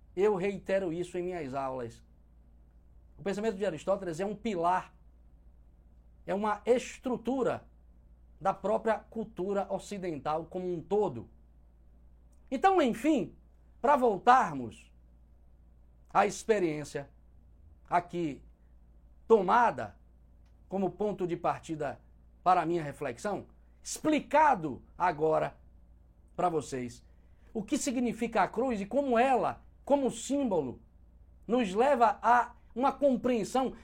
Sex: male